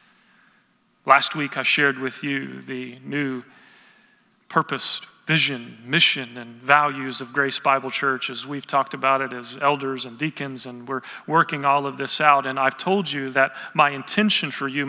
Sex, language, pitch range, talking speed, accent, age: male, English, 140-180 Hz, 170 wpm, American, 40-59